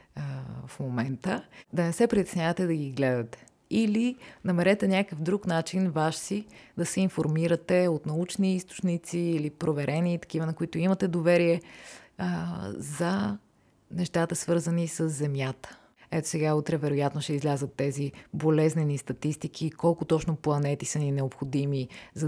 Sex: female